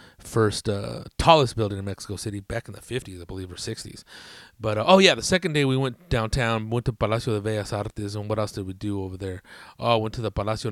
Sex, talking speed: male, 250 wpm